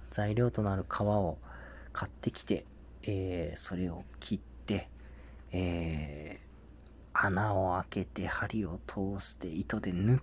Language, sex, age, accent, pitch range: Japanese, male, 40-59, native, 80-110 Hz